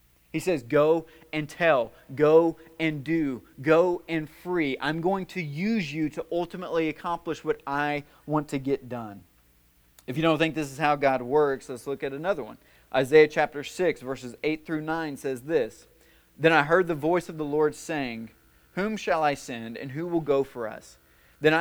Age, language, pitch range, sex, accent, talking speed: 30-49, English, 130-165 Hz, male, American, 190 wpm